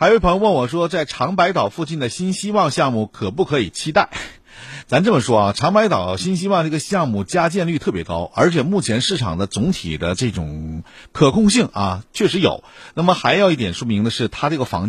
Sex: male